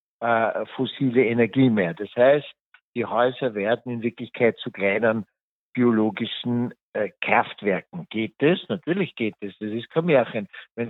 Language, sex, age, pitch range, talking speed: German, male, 60-79, 110-130 Hz, 150 wpm